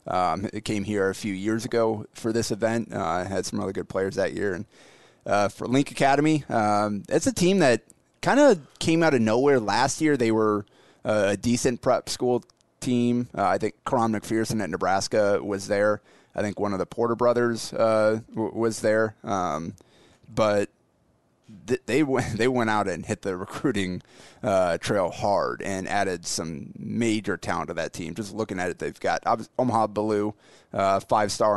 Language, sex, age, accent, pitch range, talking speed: English, male, 30-49, American, 100-115 Hz, 180 wpm